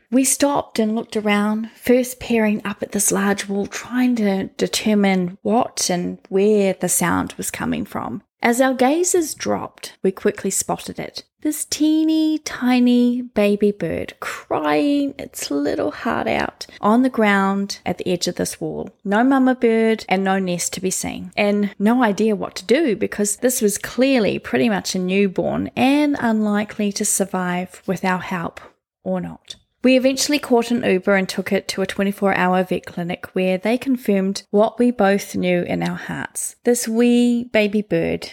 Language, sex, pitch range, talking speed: English, female, 185-235 Hz, 170 wpm